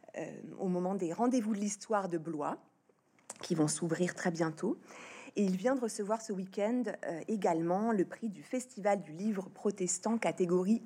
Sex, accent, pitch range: female, French, 180-230 Hz